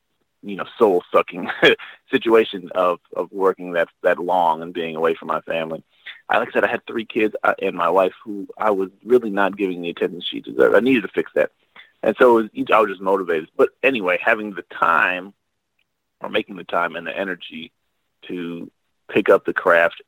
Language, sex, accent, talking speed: English, male, American, 205 wpm